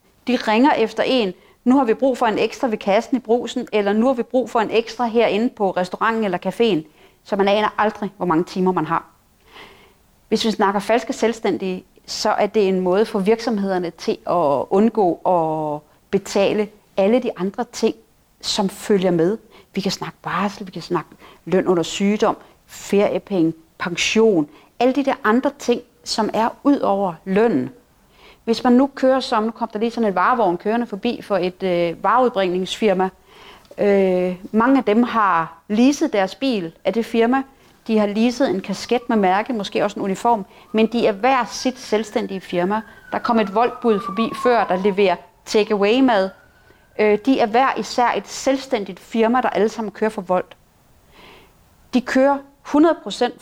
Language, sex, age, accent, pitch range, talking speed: Danish, female, 30-49, native, 190-240 Hz, 175 wpm